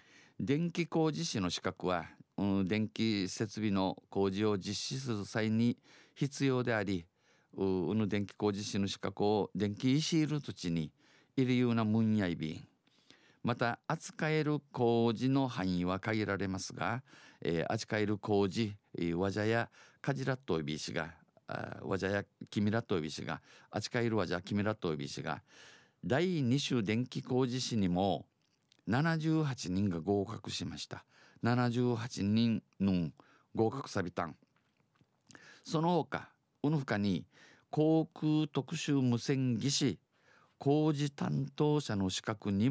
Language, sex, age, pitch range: Japanese, male, 50-69, 95-130 Hz